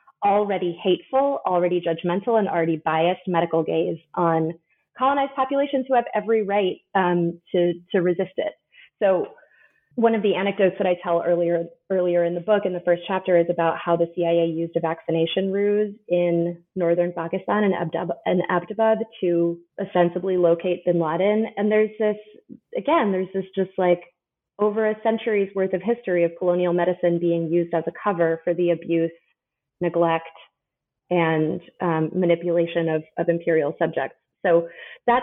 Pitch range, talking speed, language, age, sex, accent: 170-210 Hz, 160 wpm, English, 30-49, female, American